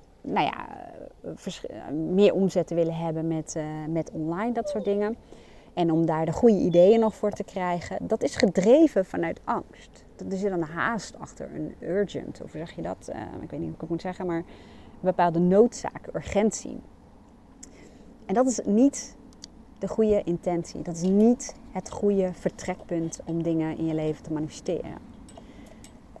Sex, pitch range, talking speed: female, 160-205 Hz, 165 wpm